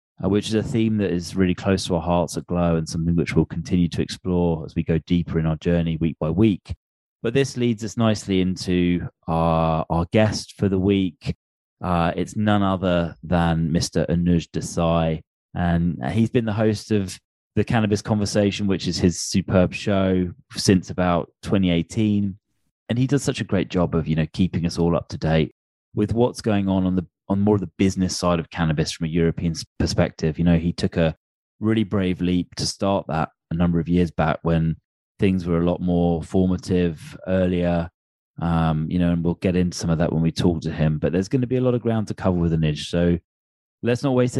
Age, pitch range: 20-39, 85-105 Hz